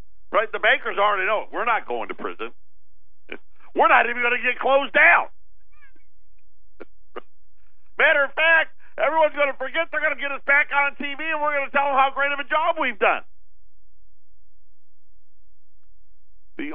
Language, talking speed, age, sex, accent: English, 170 wpm, 50-69, male, American